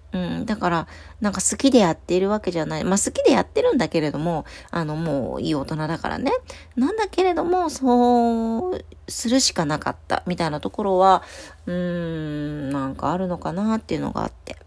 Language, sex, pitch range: Japanese, female, 145-215 Hz